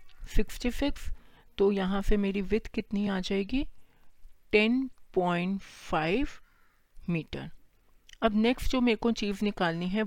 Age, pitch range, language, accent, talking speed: 40-59, 175-210 Hz, Hindi, native, 120 wpm